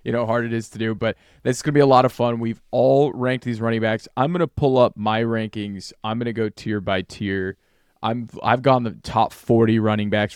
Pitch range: 105-120 Hz